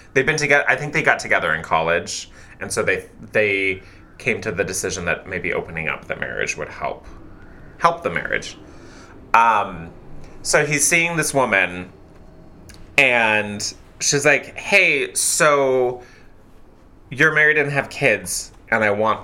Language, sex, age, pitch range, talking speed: English, male, 20-39, 105-160 Hz, 150 wpm